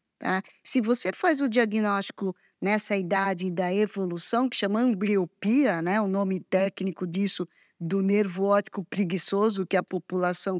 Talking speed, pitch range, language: 135 wpm, 190-225 Hz, Portuguese